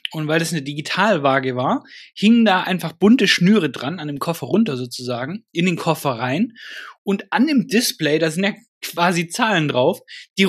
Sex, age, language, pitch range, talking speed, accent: male, 20-39, German, 150-200 Hz, 185 wpm, German